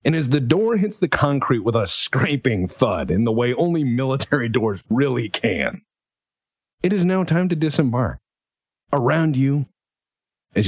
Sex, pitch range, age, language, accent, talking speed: male, 95-140 Hz, 40-59, English, American, 155 wpm